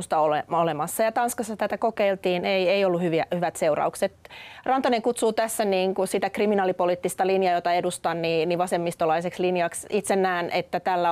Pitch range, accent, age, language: 170-205 Hz, native, 30-49, Finnish